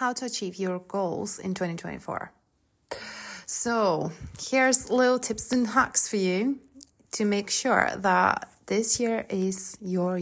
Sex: female